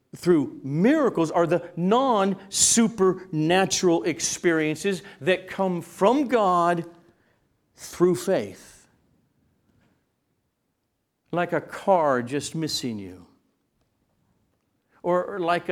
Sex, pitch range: male, 125-175 Hz